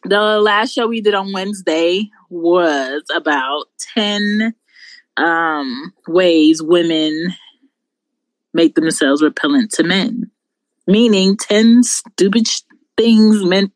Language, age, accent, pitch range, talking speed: English, 20-39, American, 170-225 Hz, 100 wpm